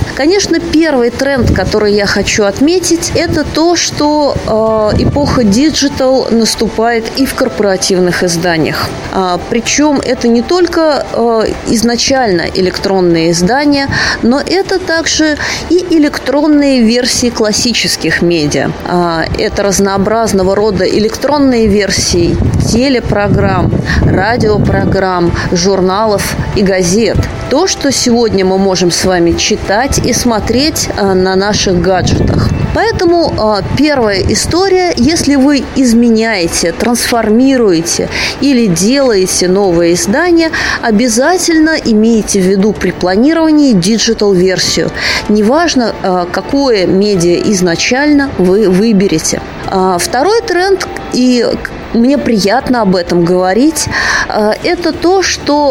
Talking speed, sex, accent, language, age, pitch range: 100 wpm, female, native, Russian, 20-39, 190-275 Hz